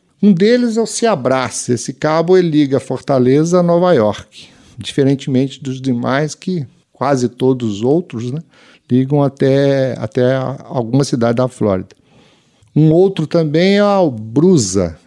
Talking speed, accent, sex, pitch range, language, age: 130 wpm, Brazilian, male, 120-160 Hz, Portuguese, 50-69